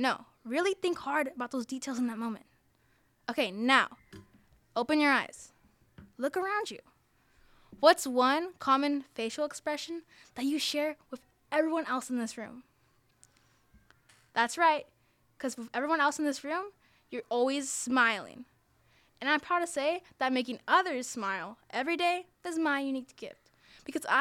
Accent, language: American, English